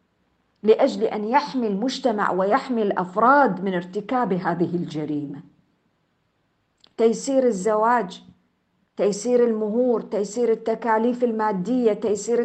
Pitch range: 185-245 Hz